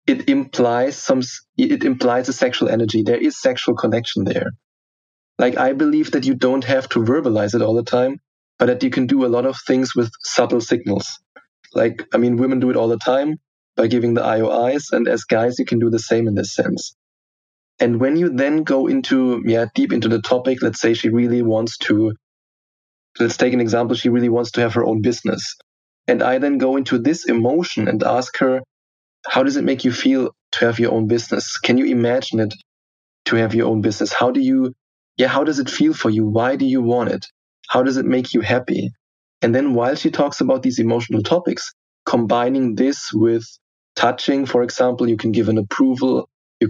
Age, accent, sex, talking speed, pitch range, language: 20-39, German, male, 210 wpm, 115-130 Hz, English